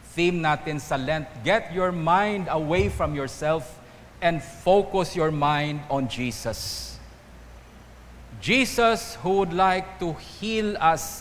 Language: English